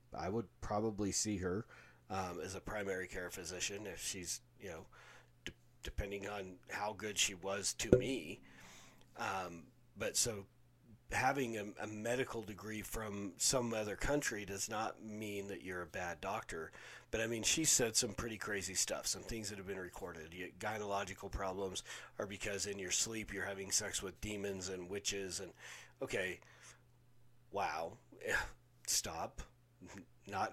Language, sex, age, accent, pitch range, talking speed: English, male, 40-59, American, 100-115 Hz, 155 wpm